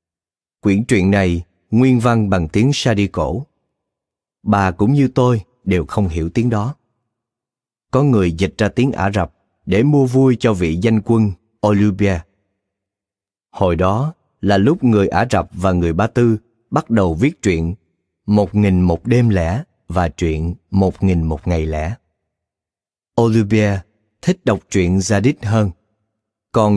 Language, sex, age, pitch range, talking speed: Vietnamese, male, 30-49, 90-115 Hz, 150 wpm